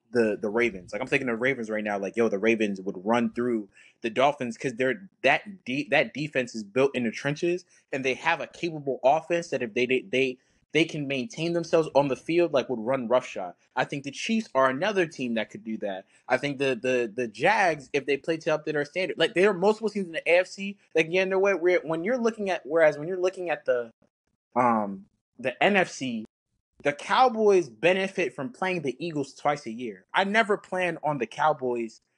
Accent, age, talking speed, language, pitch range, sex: American, 20-39, 230 wpm, English, 130-185 Hz, male